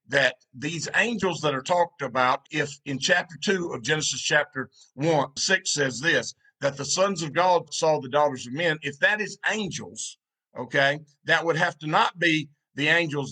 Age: 50-69